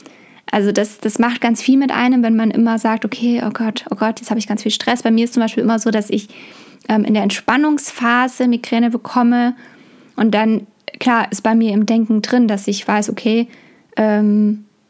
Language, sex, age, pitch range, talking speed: German, female, 20-39, 215-245 Hz, 210 wpm